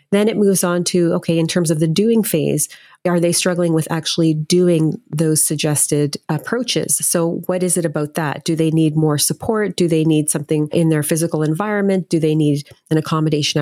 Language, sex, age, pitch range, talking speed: English, female, 30-49, 155-175 Hz, 200 wpm